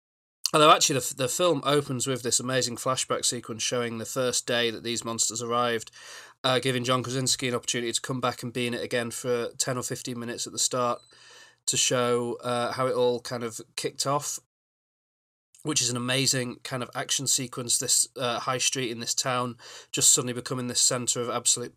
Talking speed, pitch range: 205 wpm, 120-135 Hz